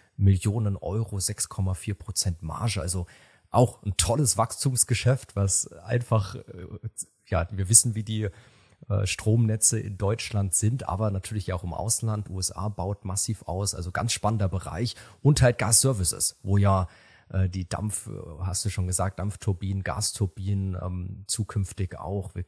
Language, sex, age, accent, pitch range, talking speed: German, male, 30-49, German, 95-110 Hz, 140 wpm